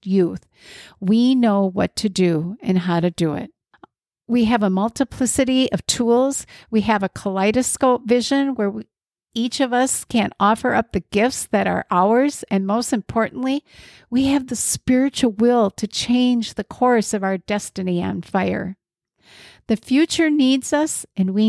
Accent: American